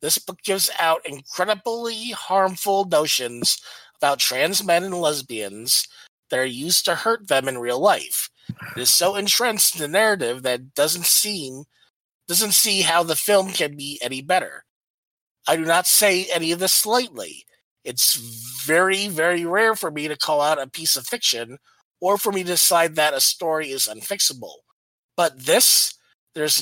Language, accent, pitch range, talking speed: English, American, 150-195 Hz, 170 wpm